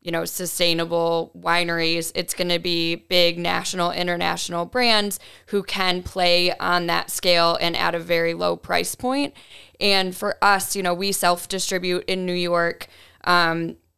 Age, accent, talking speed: 10-29, American, 155 wpm